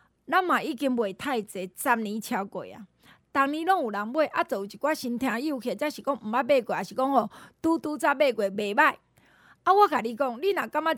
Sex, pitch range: female, 235-330 Hz